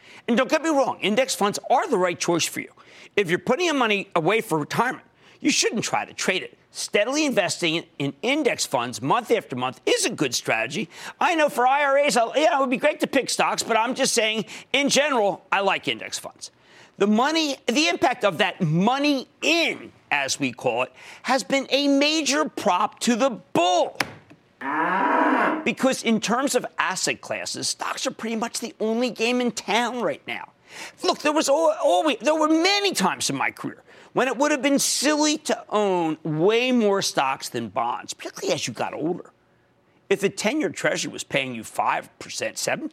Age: 50-69